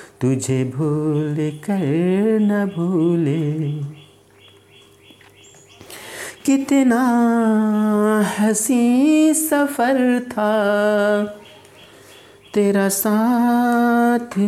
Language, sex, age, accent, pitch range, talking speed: Hindi, male, 50-69, native, 150-210 Hz, 45 wpm